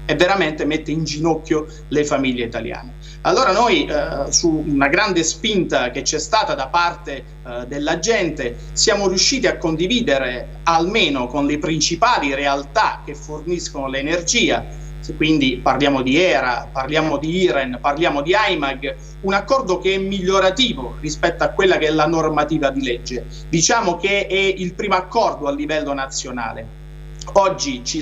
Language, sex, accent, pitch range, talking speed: Italian, male, native, 145-185 Hz, 150 wpm